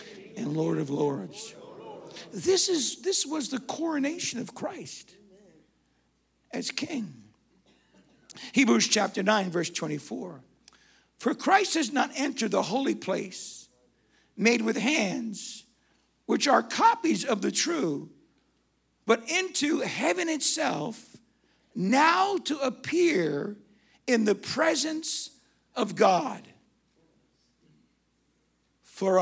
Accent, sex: American, male